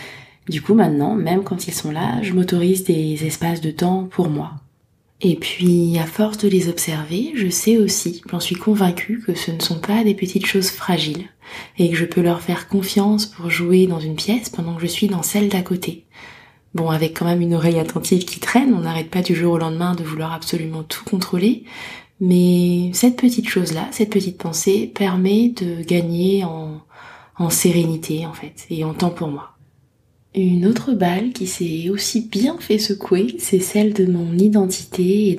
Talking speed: 195 wpm